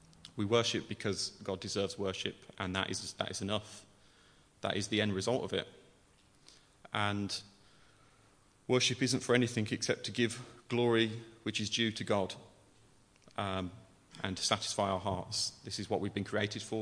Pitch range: 100-110 Hz